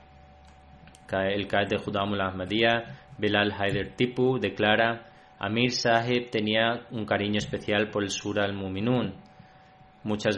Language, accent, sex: Spanish, Spanish, male